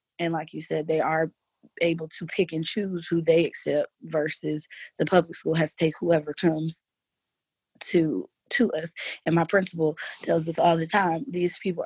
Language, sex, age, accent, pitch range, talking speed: English, female, 20-39, American, 165-195 Hz, 180 wpm